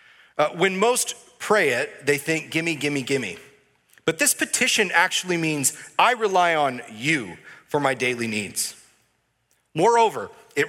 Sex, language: male, English